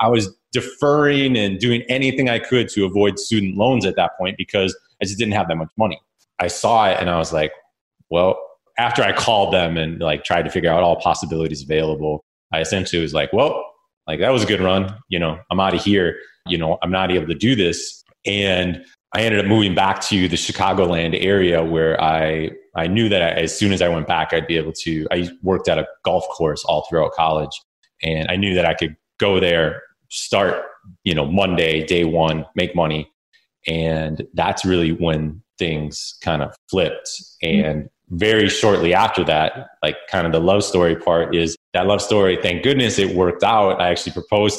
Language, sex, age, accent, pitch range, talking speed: English, male, 30-49, American, 85-110 Hz, 205 wpm